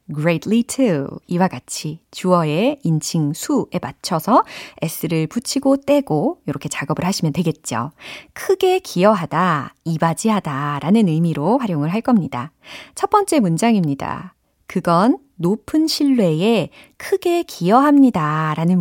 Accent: native